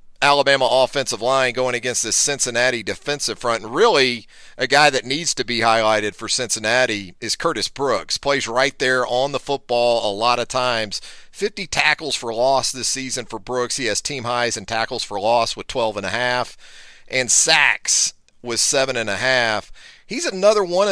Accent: American